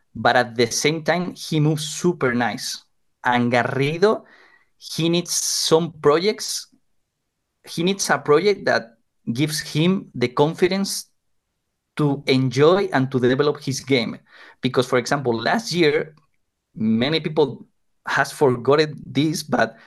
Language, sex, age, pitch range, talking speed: English, male, 30-49, 125-160 Hz, 125 wpm